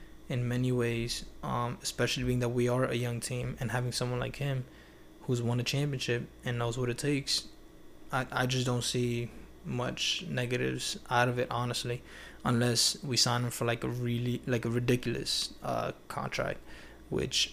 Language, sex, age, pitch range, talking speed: English, male, 20-39, 120-135 Hz, 175 wpm